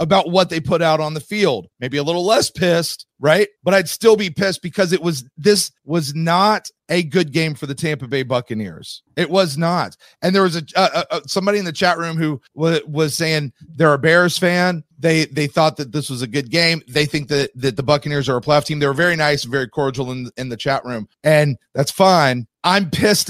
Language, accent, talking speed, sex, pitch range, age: English, American, 225 wpm, male, 140-175 Hz, 30-49